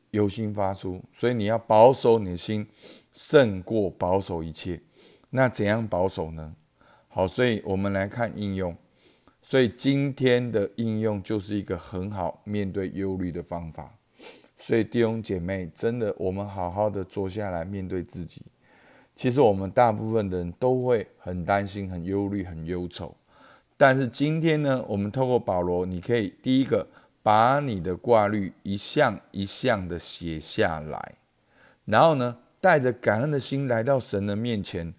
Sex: male